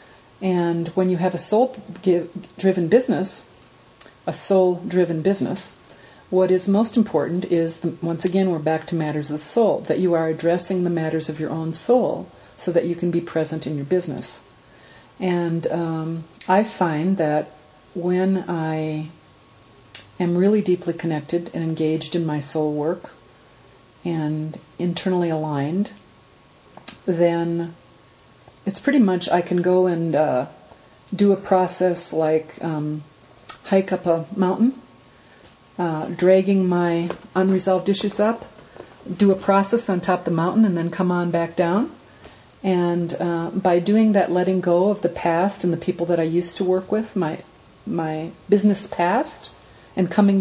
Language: English